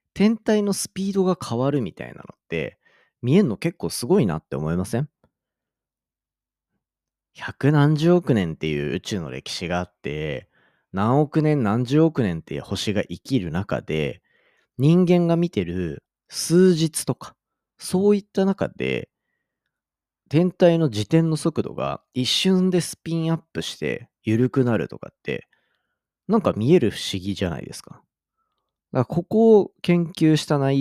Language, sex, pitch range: Japanese, male, 105-175 Hz